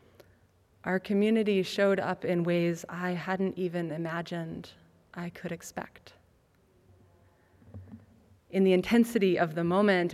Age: 20-39